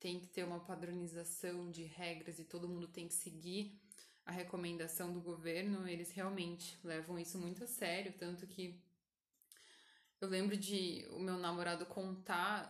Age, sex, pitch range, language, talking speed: 10-29, female, 175-225 Hz, Portuguese, 155 wpm